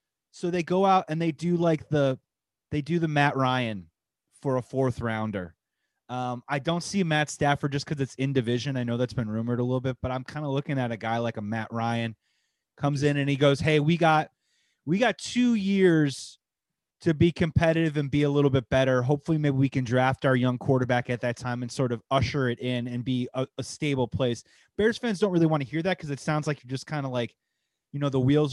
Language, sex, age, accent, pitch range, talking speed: English, male, 30-49, American, 130-165 Hz, 240 wpm